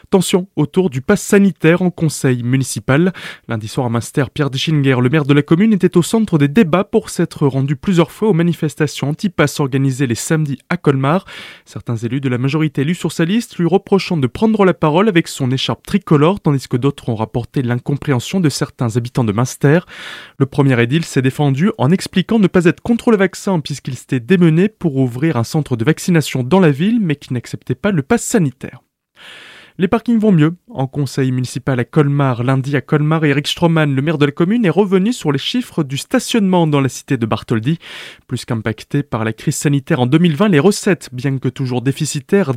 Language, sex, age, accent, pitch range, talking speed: French, male, 20-39, French, 135-180 Hz, 200 wpm